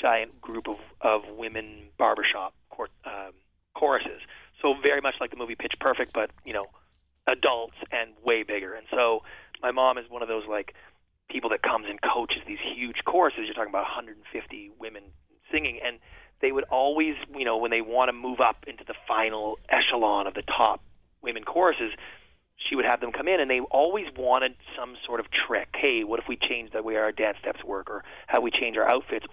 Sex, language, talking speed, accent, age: male, English, 205 wpm, American, 30-49